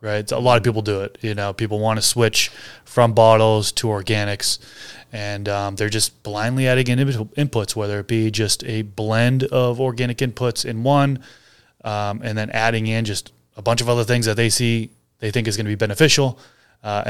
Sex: male